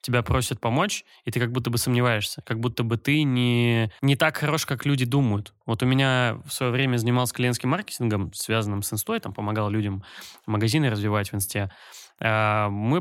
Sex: male